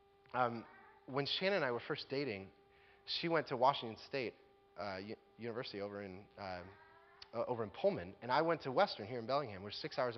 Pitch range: 130-205 Hz